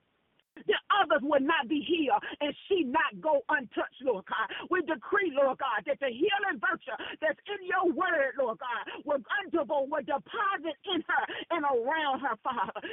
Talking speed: 170 wpm